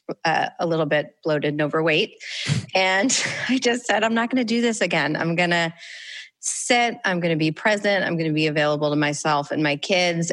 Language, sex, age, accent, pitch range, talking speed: English, female, 30-49, American, 155-185 Hz, 215 wpm